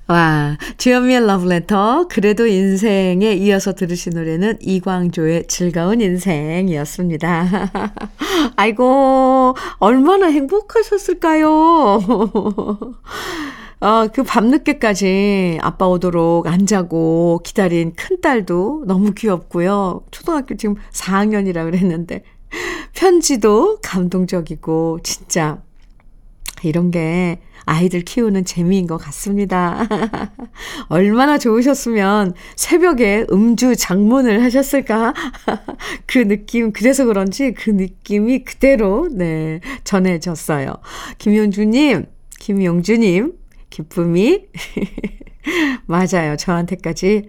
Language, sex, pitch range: Korean, female, 175-240 Hz